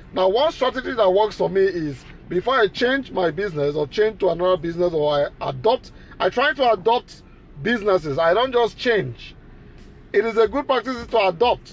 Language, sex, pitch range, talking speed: English, male, 185-235 Hz, 190 wpm